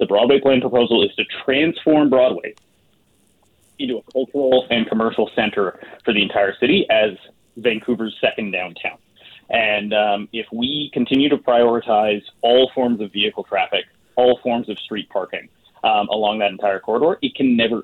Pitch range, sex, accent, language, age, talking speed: 105-130 Hz, male, American, English, 20-39, 160 wpm